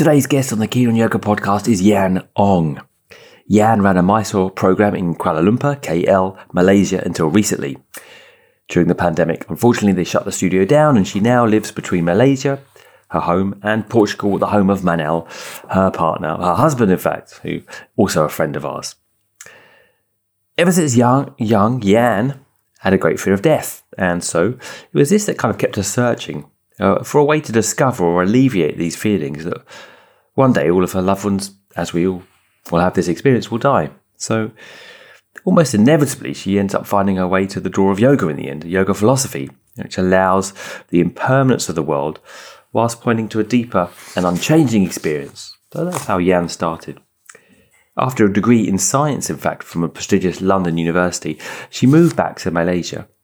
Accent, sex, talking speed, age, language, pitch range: British, male, 185 wpm, 30-49, English, 90-120 Hz